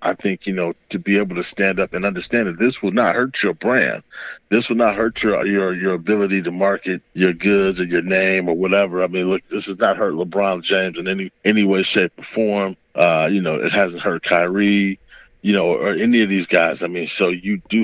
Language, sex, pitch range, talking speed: English, male, 90-100 Hz, 240 wpm